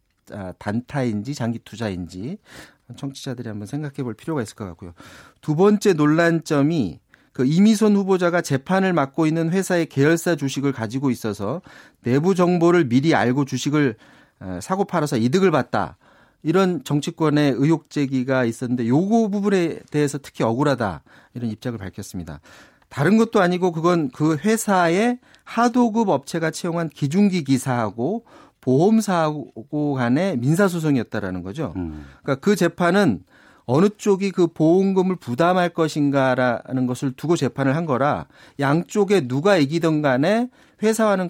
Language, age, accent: Korean, 40-59, native